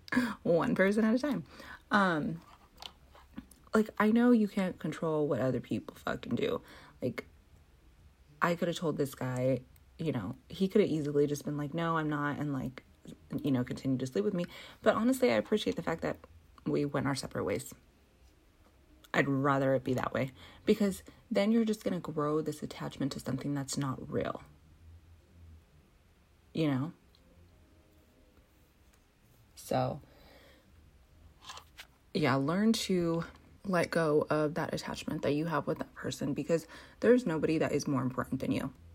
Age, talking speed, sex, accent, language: 30-49, 155 wpm, female, American, English